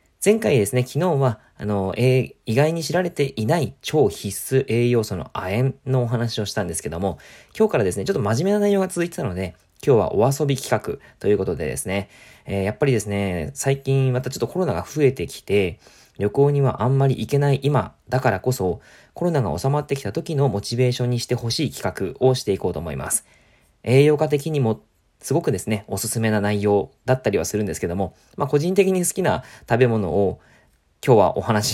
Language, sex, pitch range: Japanese, male, 100-140 Hz